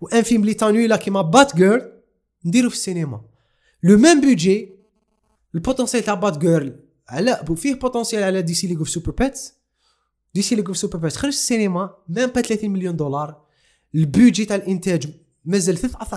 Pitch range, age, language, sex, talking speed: 155-205 Hz, 20-39, Arabic, male, 160 wpm